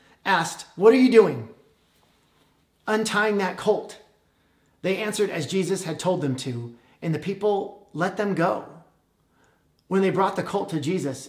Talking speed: 155 wpm